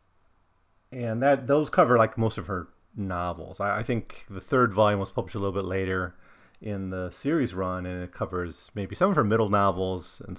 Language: English